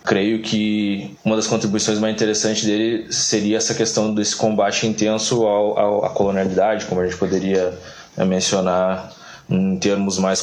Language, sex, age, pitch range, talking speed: Portuguese, male, 20-39, 100-110 Hz, 150 wpm